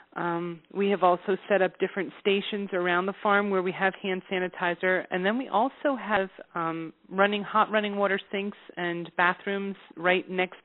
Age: 30-49